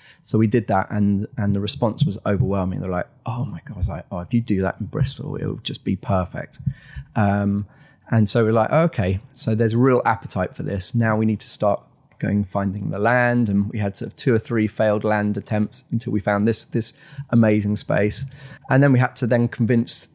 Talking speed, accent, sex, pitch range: 225 wpm, British, male, 105-125 Hz